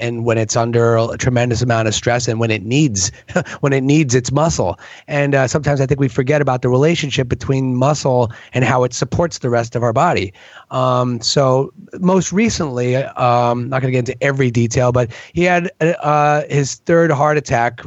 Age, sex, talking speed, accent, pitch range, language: 30-49, male, 200 wpm, American, 125-150 Hz, English